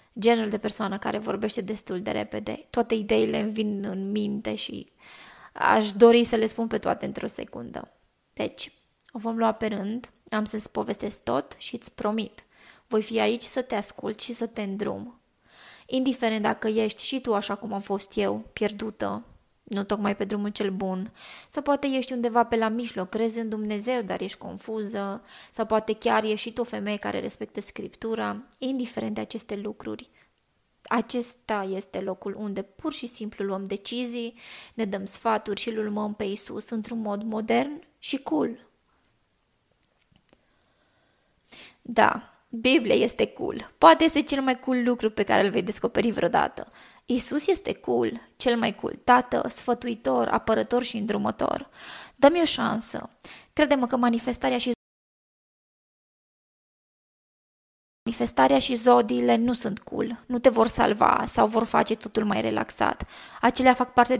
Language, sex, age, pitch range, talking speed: Romanian, female, 20-39, 205-245 Hz, 150 wpm